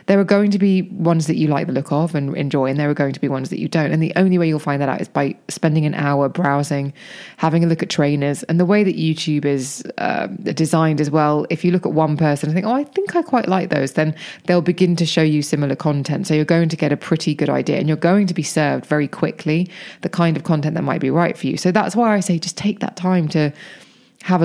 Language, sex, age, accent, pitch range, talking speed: English, female, 20-39, British, 150-190 Hz, 280 wpm